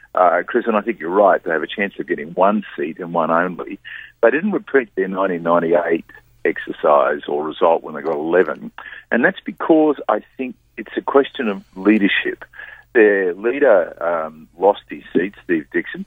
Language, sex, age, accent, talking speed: English, male, 50-69, Australian, 180 wpm